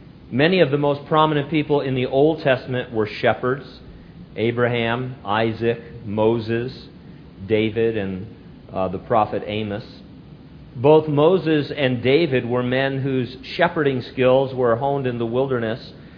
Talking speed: 130 wpm